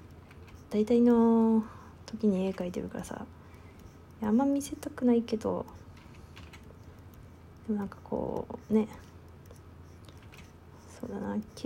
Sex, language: female, Japanese